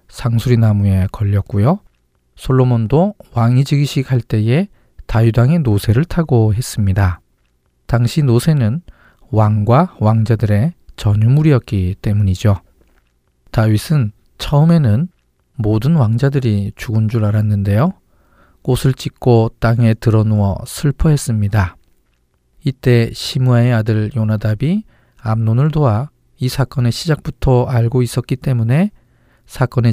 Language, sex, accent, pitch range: Korean, male, native, 105-130 Hz